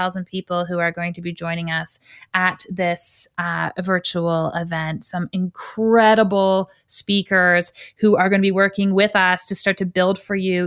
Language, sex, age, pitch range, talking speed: English, female, 30-49, 180-205 Hz, 170 wpm